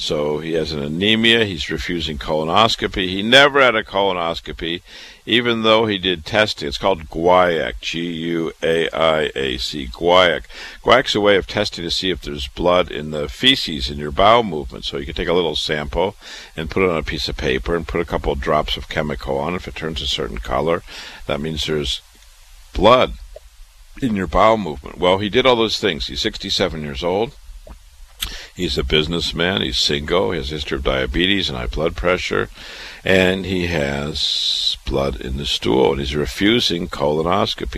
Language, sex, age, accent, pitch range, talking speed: English, male, 50-69, American, 70-90 Hz, 180 wpm